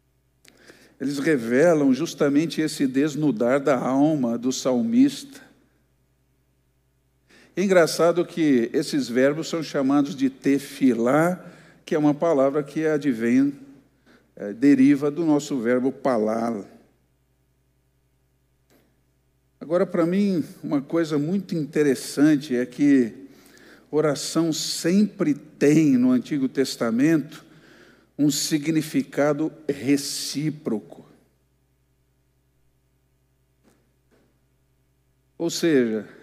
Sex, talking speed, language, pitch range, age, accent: male, 85 wpm, Portuguese, 130-175 Hz, 50-69, Brazilian